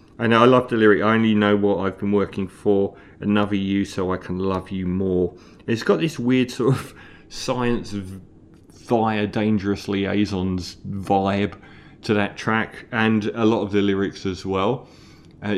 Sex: male